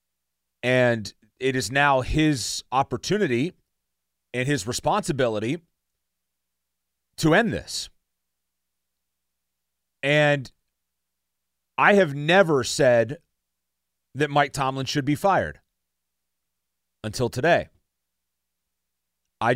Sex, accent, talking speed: male, American, 80 wpm